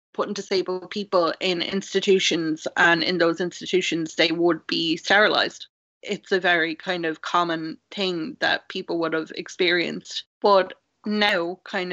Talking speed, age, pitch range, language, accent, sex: 140 wpm, 20-39, 170-200 Hz, English, Irish, female